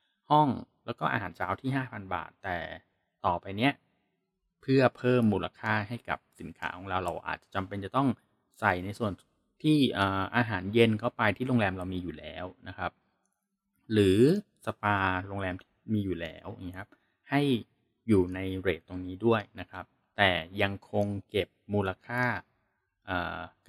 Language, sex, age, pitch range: Thai, male, 20-39, 90-120 Hz